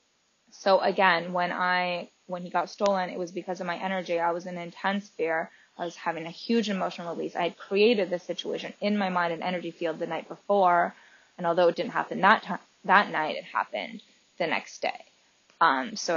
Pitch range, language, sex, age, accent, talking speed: 170-200 Hz, English, female, 20-39, American, 210 wpm